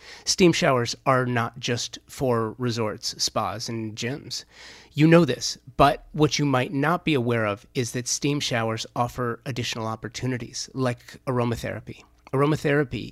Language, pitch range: English, 115-140 Hz